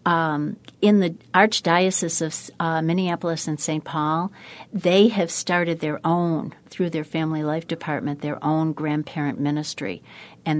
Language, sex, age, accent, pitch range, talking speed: English, female, 60-79, American, 155-185 Hz, 140 wpm